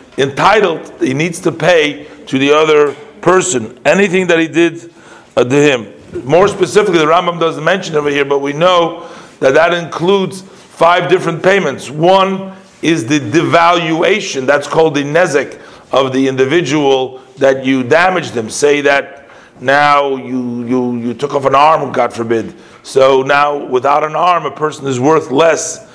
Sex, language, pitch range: male, English, 135-170 Hz